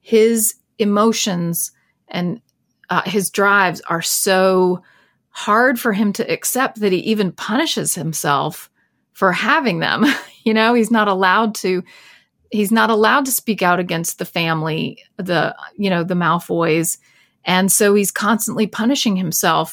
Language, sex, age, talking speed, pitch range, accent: English, female, 30-49, 145 wpm, 180-220 Hz, American